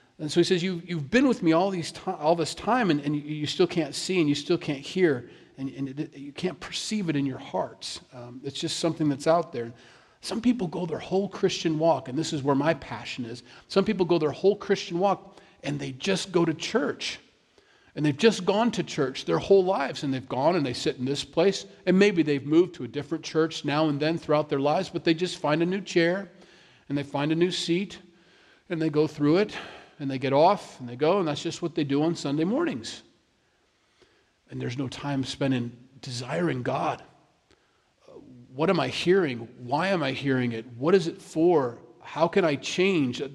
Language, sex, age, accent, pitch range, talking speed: English, male, 40-59, American, 135-180 Hz, 210 wpm